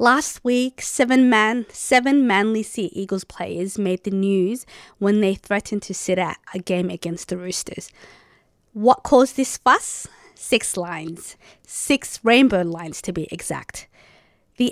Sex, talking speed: female, 145 wpm